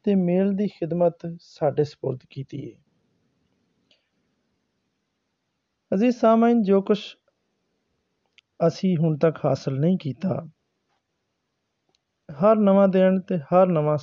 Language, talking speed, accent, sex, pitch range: Hindi, 95 wpm, native, male, 150-190 Hz